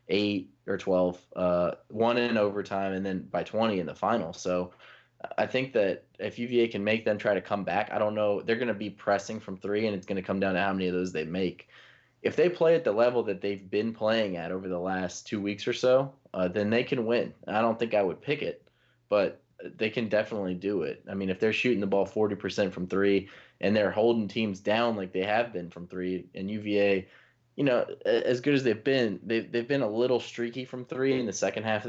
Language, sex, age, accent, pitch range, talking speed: English, male, 20-39, American, 95-110 Hz, 245 wpm